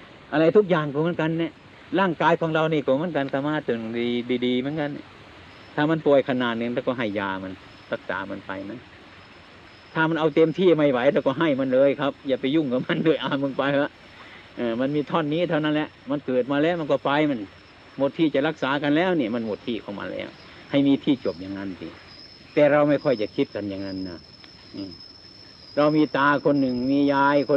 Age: 60-79